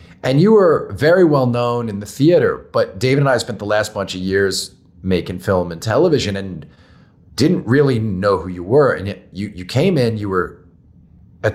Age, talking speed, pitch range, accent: 40-59, 205 wpm, 90-125 Hz, American